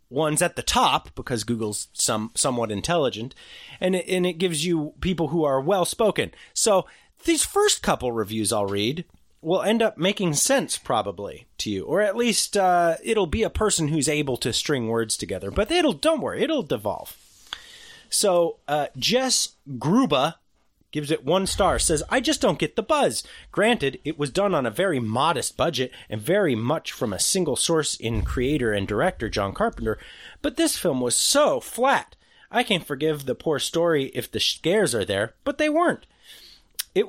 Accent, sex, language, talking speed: American, male, English, 185 wpm